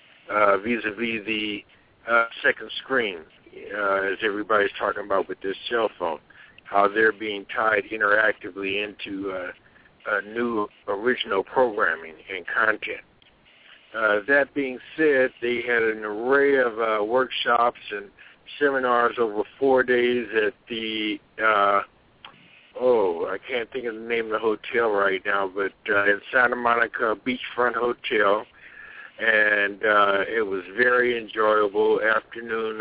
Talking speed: 135 wpm